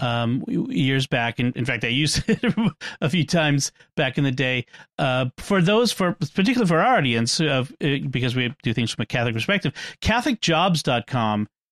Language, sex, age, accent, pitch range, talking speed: English, male, 40-59, American, 130-165 Hz, 175 wpm